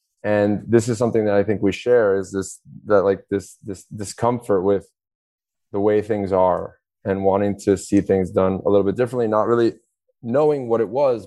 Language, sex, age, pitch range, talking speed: English, male, 20-39, 95-110 Hz, 195 wpm